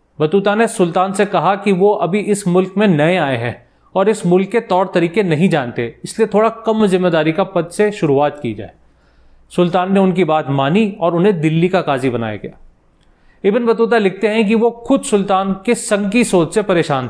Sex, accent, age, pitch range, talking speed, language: male, native, 30-49, 160-215 Hz, 200 wpm, Hindi